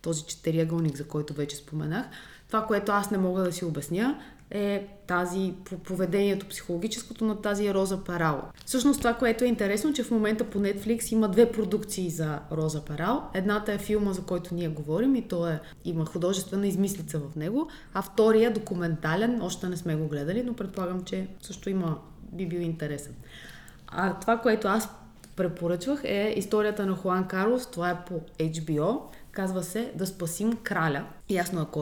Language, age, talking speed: Bulgarian, 20-39, 170 wpm